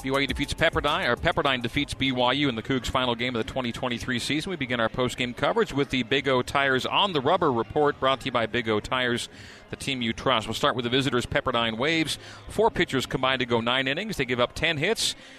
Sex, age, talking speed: male, 40-59, 235 wpm